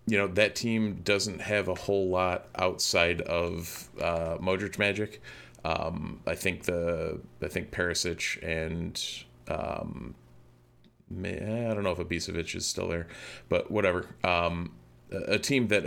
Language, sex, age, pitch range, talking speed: English, male, 30-49, 85-100 Hz, 140 wpm